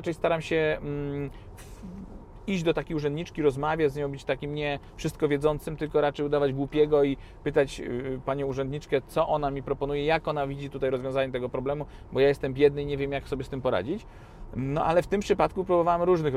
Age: 40-59